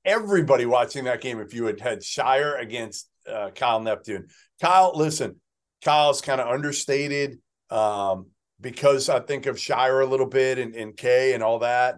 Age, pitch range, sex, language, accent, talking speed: 40-59, 115-160 Hz, male, English, American, 170 wpm